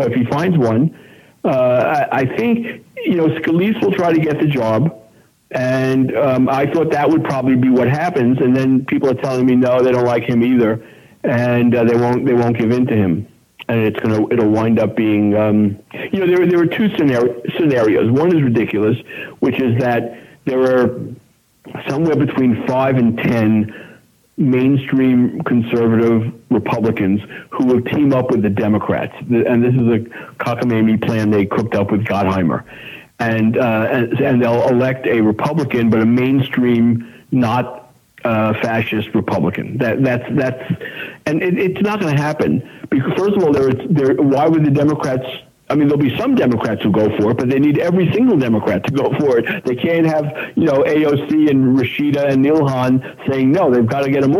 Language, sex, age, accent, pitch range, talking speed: English, male, 50-69, American, 115-145 Hz, 190 wpm